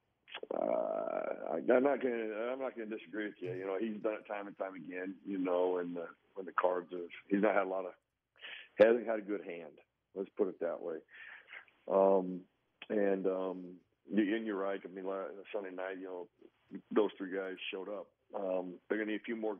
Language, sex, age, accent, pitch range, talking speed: English, male, 50-69, American, 90-110 Hz, 210 wpm